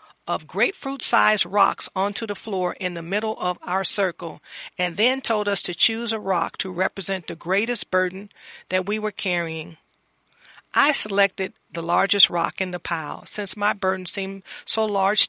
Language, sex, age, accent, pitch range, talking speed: English, female, 40-59, American, 190-235 Hz, 170 wpm